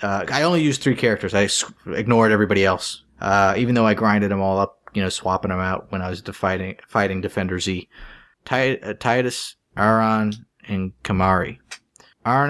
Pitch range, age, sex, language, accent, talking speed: 100-130 Hz, 30-49, male, English, American, 180 wpm